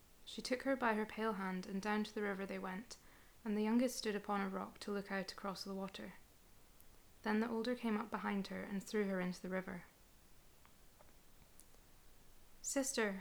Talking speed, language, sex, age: 185 wpm, English, female, 20-39